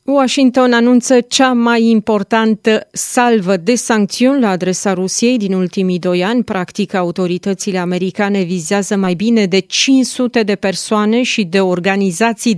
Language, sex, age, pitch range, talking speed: Romanian, female, 30-49, 195-230 Hz, 135 wpm